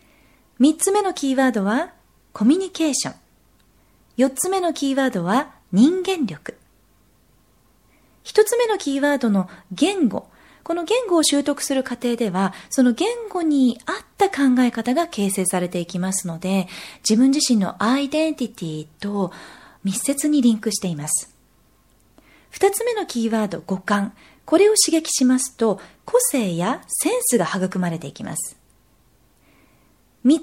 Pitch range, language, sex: 195-325 Hz, Japanese, female